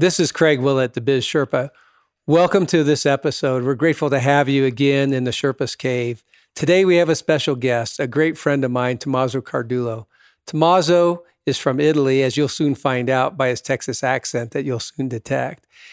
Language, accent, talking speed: English, American, 190 wpm